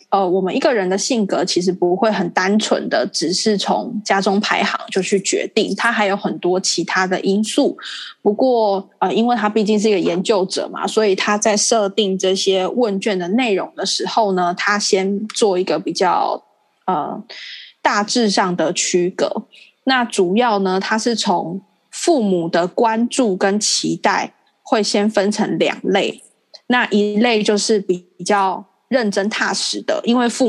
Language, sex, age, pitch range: Chinese, female, 20-39, 190-235 Hz